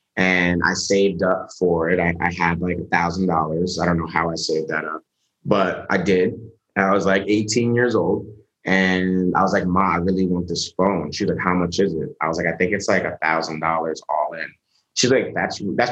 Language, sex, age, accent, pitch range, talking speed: English, male, 30-49, American, 90-110 Hz, 235 wpm